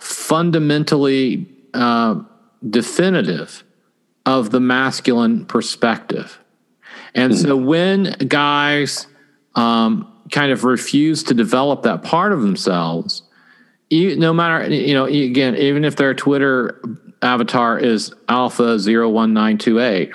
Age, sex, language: 40-59, male, English